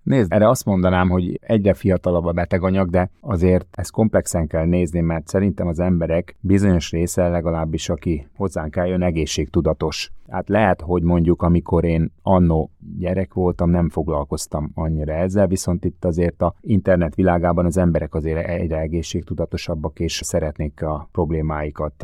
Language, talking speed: Hungarian, 145 wpm